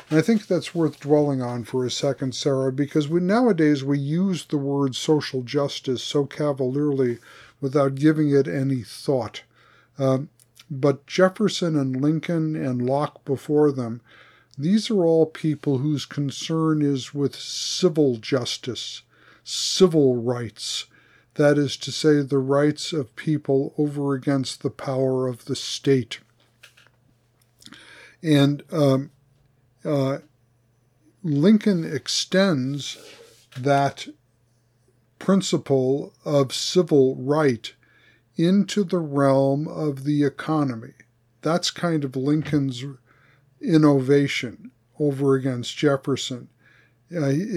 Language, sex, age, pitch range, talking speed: English, male, 50-69, 130-150 Hz, 110 wpm